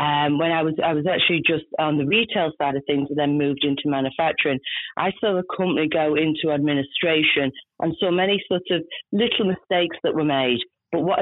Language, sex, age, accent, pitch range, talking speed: English, female, 40-59, British, 150-185 Hz, 210 wpm